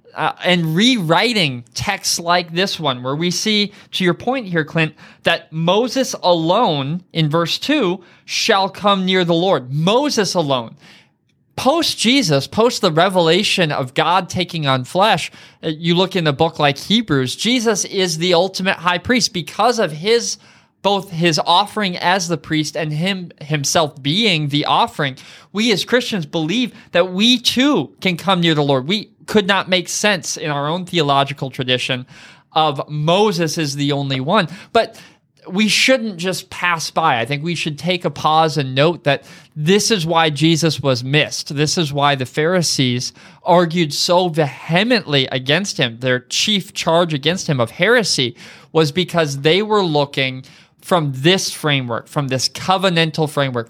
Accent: American